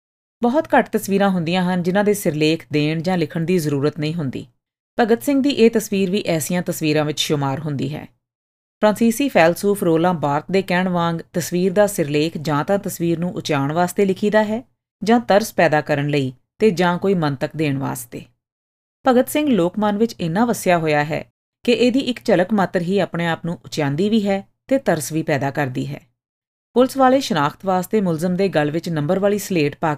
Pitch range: 155-215 Hz